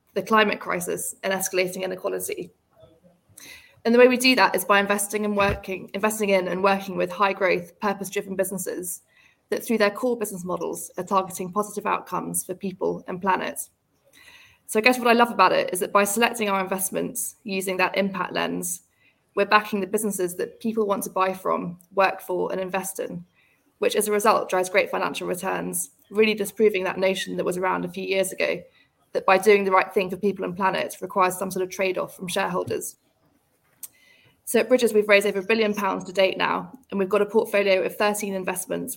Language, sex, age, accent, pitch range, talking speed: English, female, 20-39, British, 185-210 Hz, 195 wpm